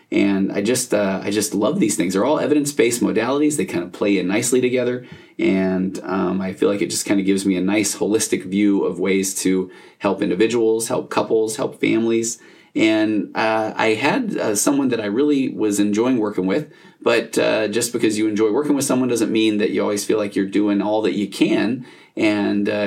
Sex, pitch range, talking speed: male, 95-110 Hz, 215 wpm